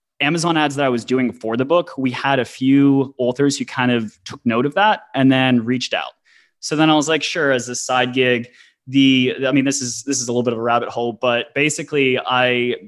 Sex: male